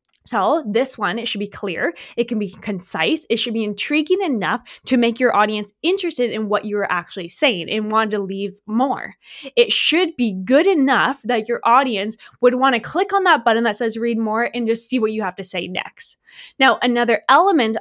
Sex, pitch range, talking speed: female, 200-255 Hz, 210 wpm